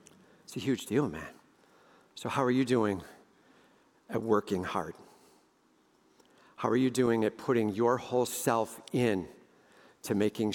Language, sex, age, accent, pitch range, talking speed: English, male, 50-69, American, 120-180 Hz, 140 wpm